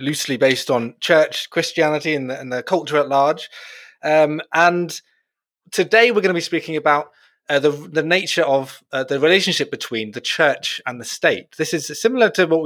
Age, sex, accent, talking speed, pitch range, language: 30-49, male, British, 195 wpm, 125-165 Hz, English